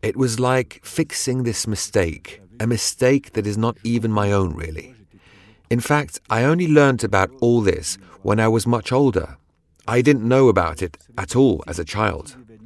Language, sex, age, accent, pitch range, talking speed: English, male, 40-59, British, 90-120 Hz, 180 wpm